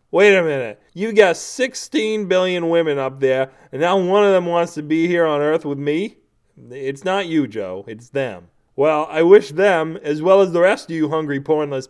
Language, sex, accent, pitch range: English, male, American, 135-190 Hz